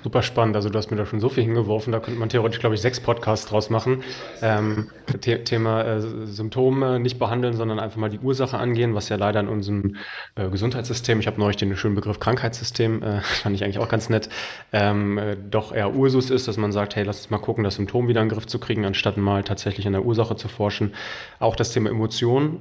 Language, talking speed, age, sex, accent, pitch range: German, 235 wpm, 20-39, male, German, 100-115 Hz